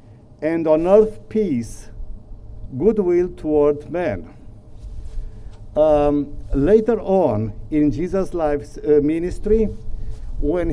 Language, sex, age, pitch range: English, male, 60-79, 110-170 Hz